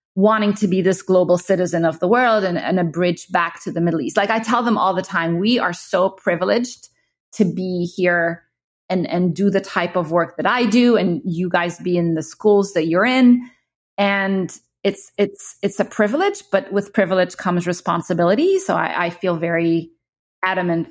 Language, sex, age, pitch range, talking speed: English, female, 30-49, 170-210 Hz, 200 wpm